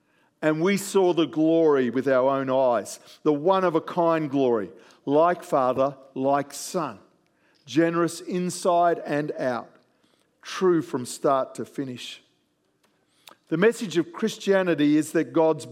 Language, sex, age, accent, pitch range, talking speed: English, male, 50-69, Australian, 145-180 Hz, 120 wpm